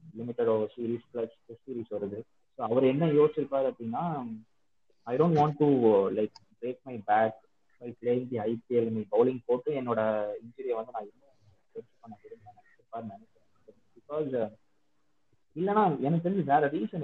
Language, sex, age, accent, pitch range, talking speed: Tamil, male, 30-49, native, 120-170 Hz, 40 wpm